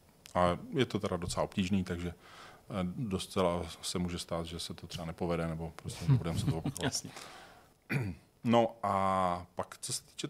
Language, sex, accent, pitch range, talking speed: Czech, male, native, 90-110 Hz, 165 wpm